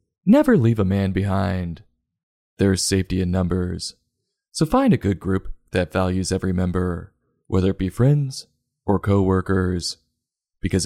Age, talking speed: 20-39, 140 wpm